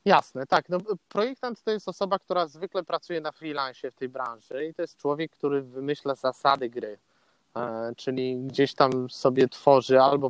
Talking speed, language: 165 wpm, Polish